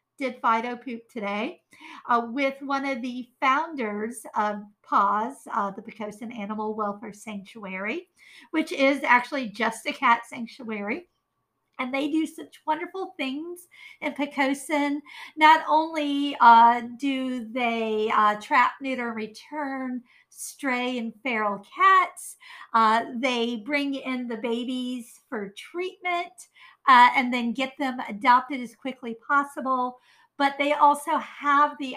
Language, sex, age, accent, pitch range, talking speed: English, female, 50-69, American, 230-295 Hz, 130 wpm